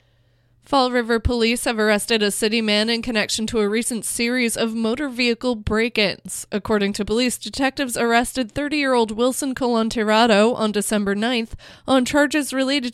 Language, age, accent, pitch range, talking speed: English, 20-39, American, 205-240 Hz, 150 wpm